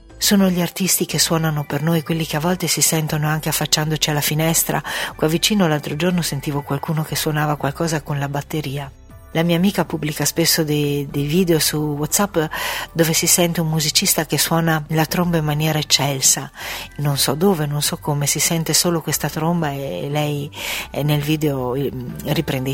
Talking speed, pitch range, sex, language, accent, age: 175 wpm, 145-170 Hz, female, Italian, native, 50-69